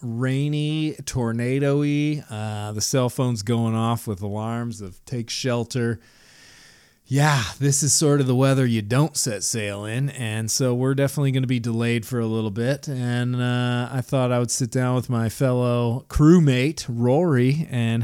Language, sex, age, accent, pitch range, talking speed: English, male, 30-49, American, 110-135 Hz, 165 wpm